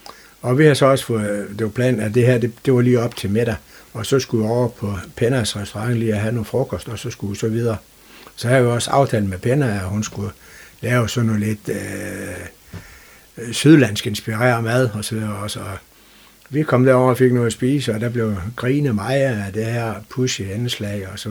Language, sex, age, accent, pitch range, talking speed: Danish, male, 60-79, native, 105-125 Hz, 230 wpm